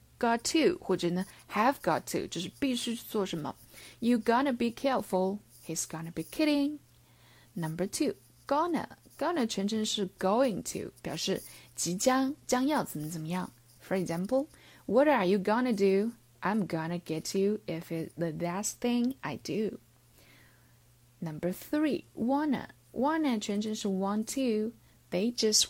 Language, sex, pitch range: Chinese, female, 170-235 Hz